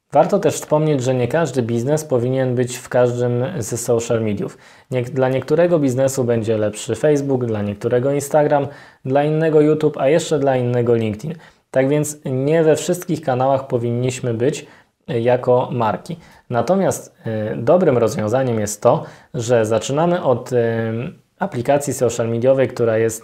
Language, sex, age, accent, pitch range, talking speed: Polish, male, 20-39, native, 120-150 Hz, 140 wpm